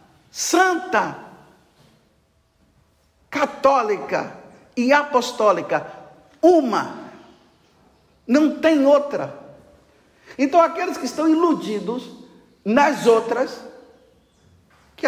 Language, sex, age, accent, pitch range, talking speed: Portuguese, male, 50-69, Brazilian, 230-300 Hz, 65 wpm